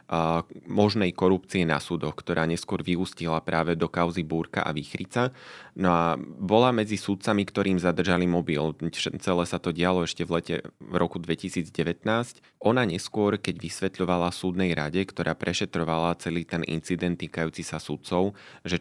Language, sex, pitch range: Slovak, male, 85-95 Hz